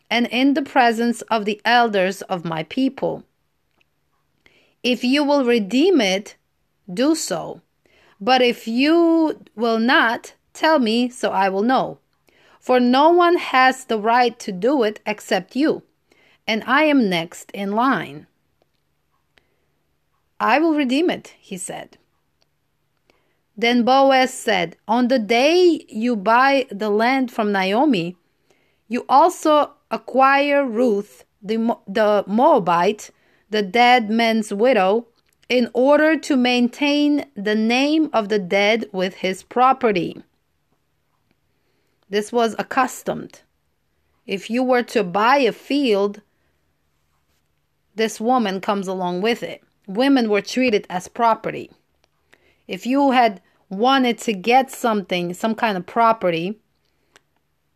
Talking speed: 125 wpm